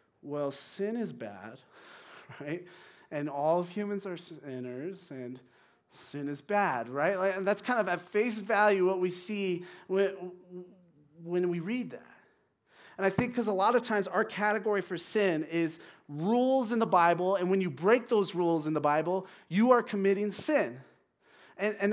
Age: 30-49